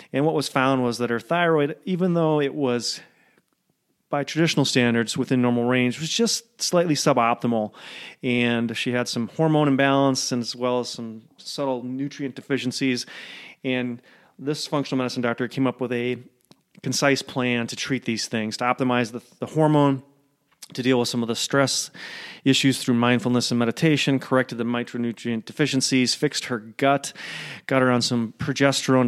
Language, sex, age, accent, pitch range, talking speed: English, male, 30-49, American, 120-140 Hz, 165 wpm